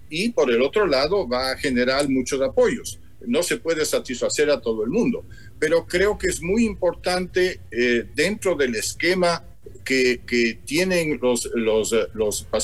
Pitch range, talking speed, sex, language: 115-185 Hz, 155 wpm, male, Spanish